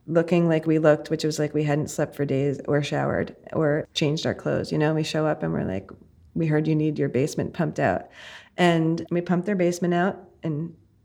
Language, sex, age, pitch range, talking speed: English, female, 30-49, 155-185 Hz, 225 wpm